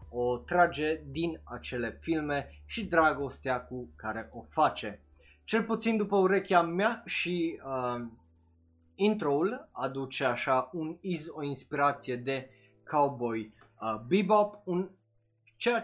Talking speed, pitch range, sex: 115 wpm, 115-180 Hz, male